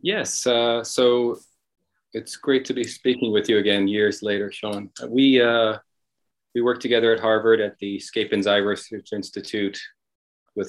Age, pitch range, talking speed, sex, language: 40-59, 95-115 Hz, 155 wpm, male, English